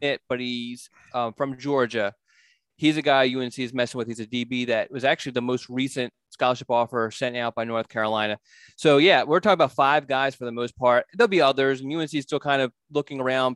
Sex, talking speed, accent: male, 220 wpm, American